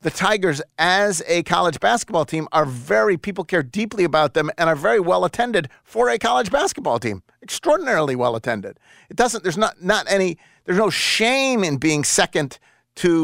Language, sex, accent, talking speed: English, male, American, 185 wpm